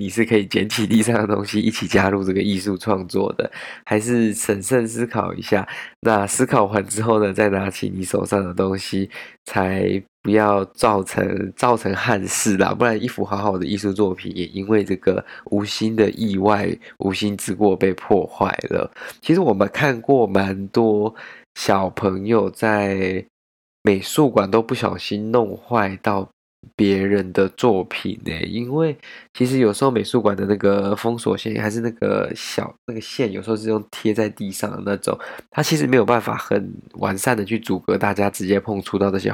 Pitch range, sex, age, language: 100-115 Hz, male, 20-39, Chinese